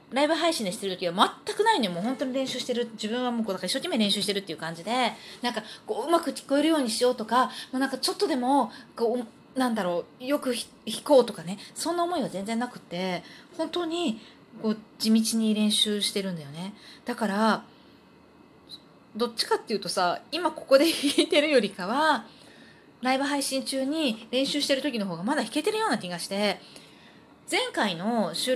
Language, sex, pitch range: Japanese, female, 210-285 Hz